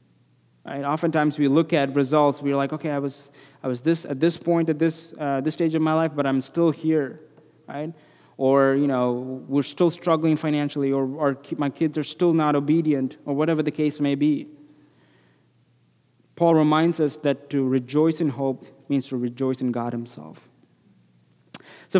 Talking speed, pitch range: 180 wpm, 130-155 Hz